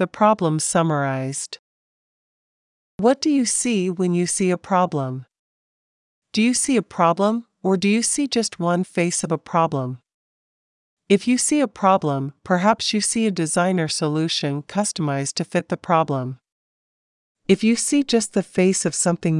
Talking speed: 160 wpm